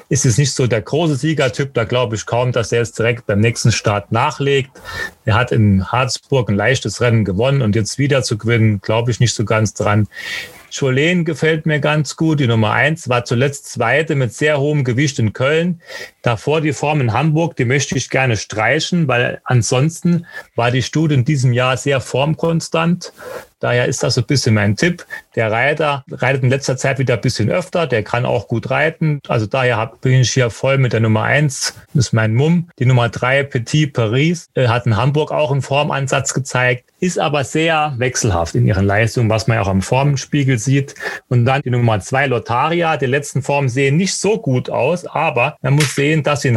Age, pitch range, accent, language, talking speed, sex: 30-49, 120-150 Hz, German, German, 205 wpm, male